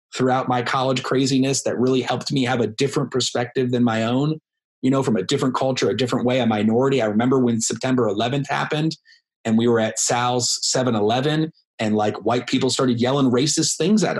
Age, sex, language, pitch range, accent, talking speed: 30-49, male, English, 125-170 Hz, American, 200 wpm